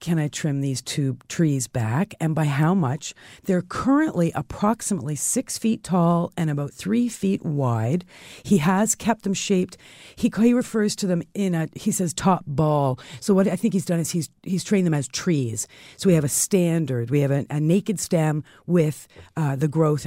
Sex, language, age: female, English, 50-69